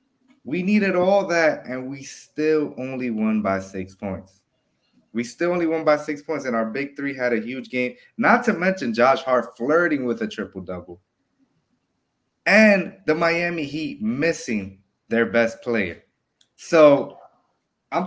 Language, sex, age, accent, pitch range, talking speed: English, male, 20-39, American, 110-165 Hz, 155 wpm